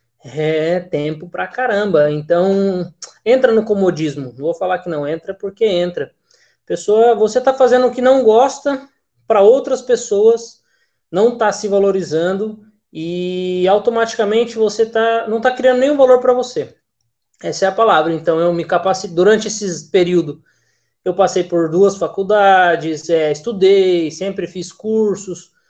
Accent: Brazilian